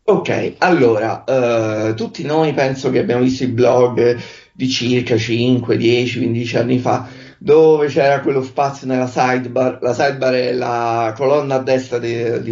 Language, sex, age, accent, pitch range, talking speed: Italian, male, 30-49, native, 125-170 Hz, 150 wpm